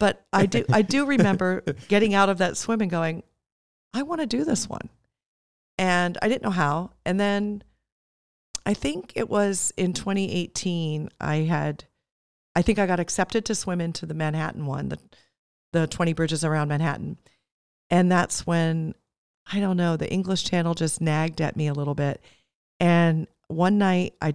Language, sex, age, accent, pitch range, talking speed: English, female, 40-59, American, 150-190 Hz, 175 wpm